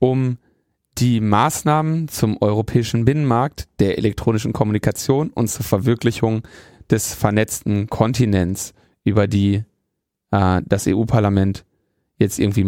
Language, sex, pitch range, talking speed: German, male, 105-125 Hz, 105 wpm